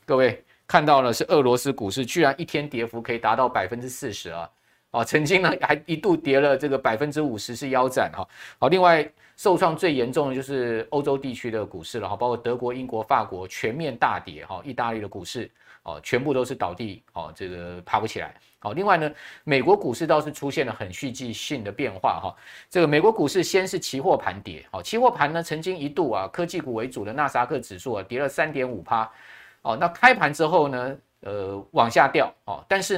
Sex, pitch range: male, 120-170 Hz